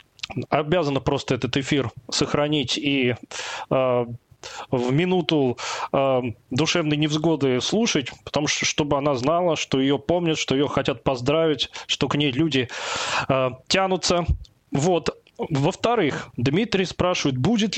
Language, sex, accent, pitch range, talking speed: Russian, male, native, 140-180 Hz, 120 wpm